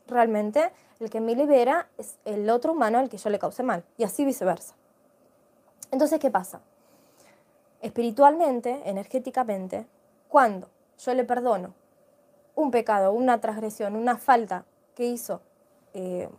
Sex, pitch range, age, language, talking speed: female, 230-295 Hz, 20-39, Spanish, 130 wpm